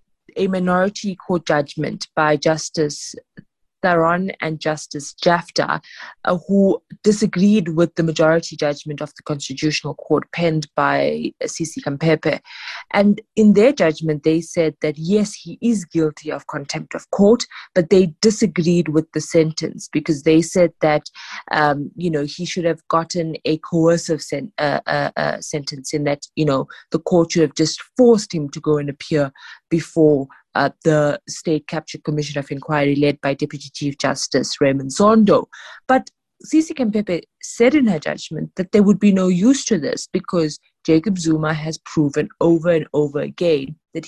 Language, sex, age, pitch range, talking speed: English, female, 20-39, 150-190 Hz, 160 wpm